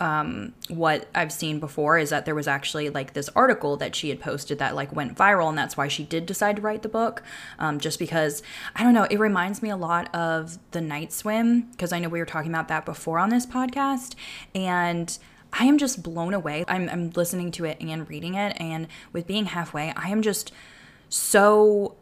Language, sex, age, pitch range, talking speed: English, female, 10-29, 160-195 Hz, 220 wpm